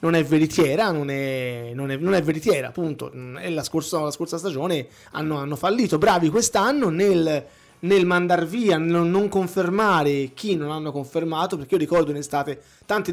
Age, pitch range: 20-39, 155-215 Hz